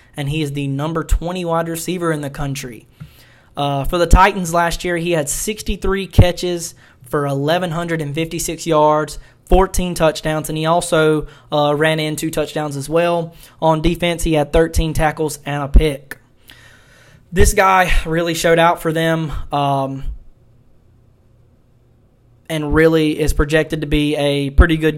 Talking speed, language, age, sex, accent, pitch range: 150 wpm, English, 20-39, male, American, 145-165 Hz